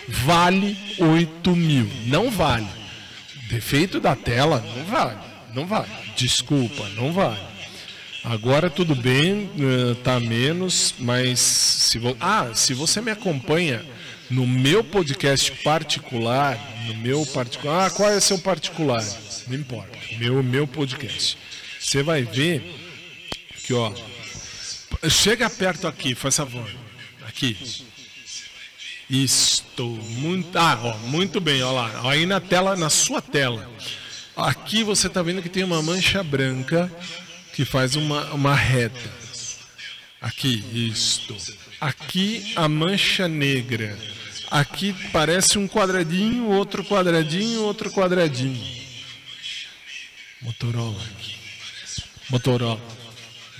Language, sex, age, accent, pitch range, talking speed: Portuguese, male, 50-69, Brazilian, 120-170 Hz, 115 wpm